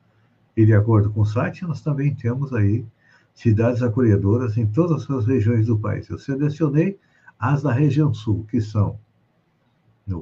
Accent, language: Brazilian, Portuguese